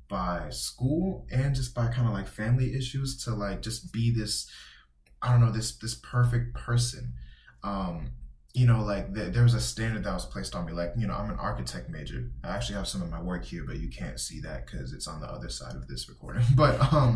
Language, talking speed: English, 235 wpm